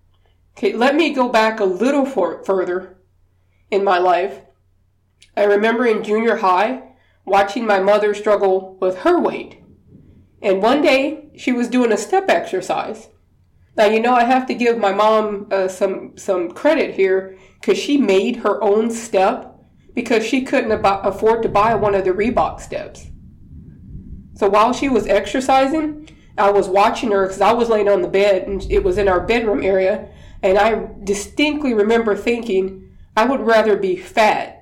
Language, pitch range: English, 190-235 Hz